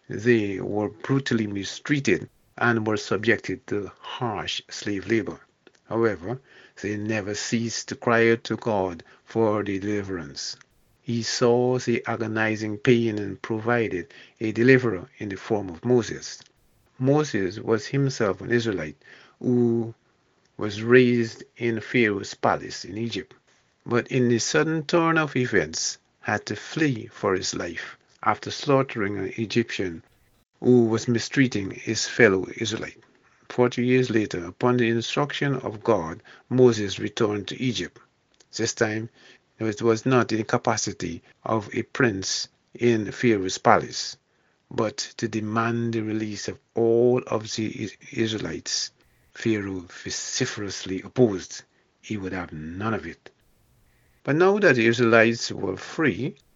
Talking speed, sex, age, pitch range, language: 130 wpm, male, 50-69, 105-125 Hz, English